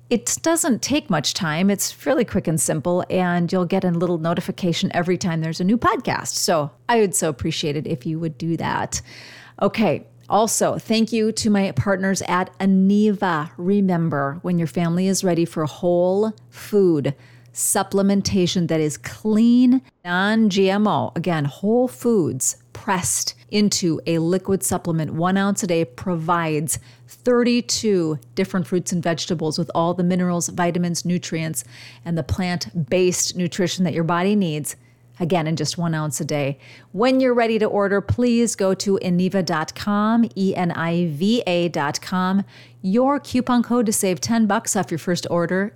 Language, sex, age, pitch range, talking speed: English, female, 40-59, 155-200 Hz, 150 wpm